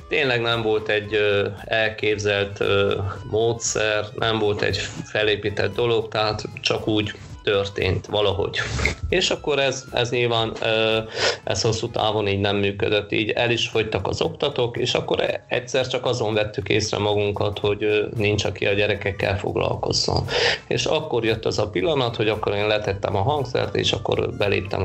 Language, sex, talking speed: Hungarian, male, 150 wpm